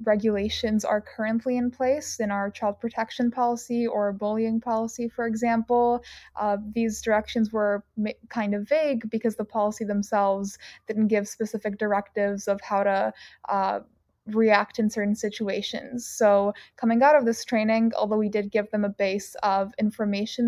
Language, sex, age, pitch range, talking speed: English, female, 20-39, 205-230 Hz, 155 wpm